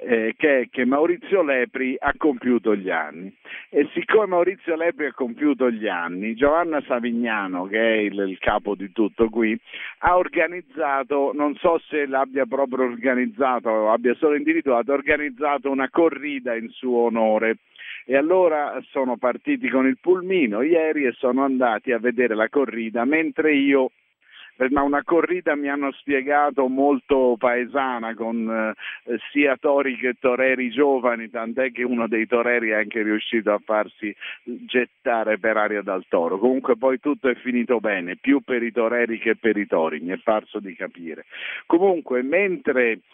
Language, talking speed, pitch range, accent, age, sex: Italian, 160 wpm, 115-140 Hz, native, 50-69, male